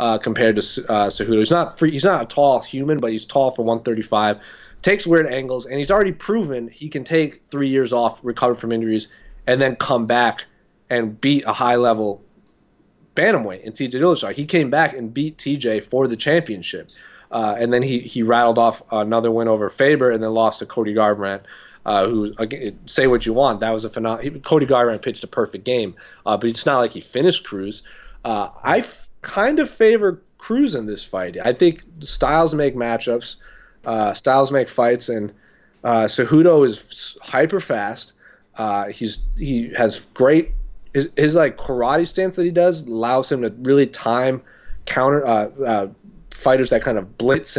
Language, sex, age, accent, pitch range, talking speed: English, male, 30-49, American, 115-160 Hz, 185 wpm